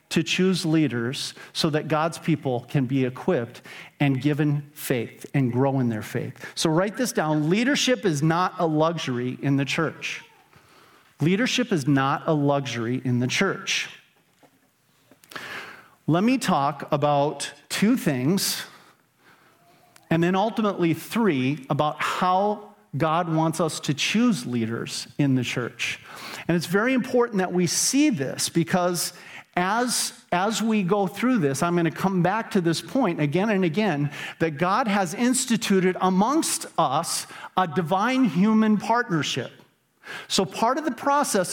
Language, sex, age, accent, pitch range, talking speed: English, male, 40-59, American, 150-215 Hz, 145 wpm